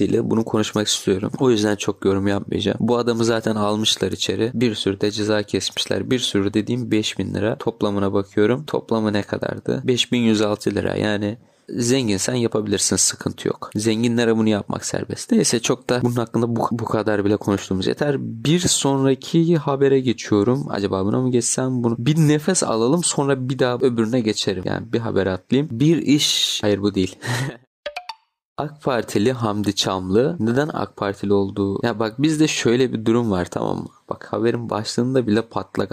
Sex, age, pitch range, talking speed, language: male, 30-49, 105-145 Hz, 165 wpm, Turkish